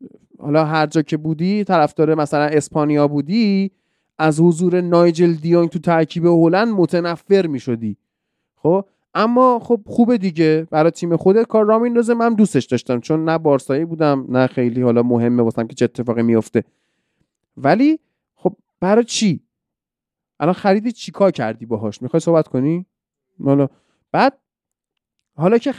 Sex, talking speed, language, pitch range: male, 150 wpm, Persian, 135-195 Hz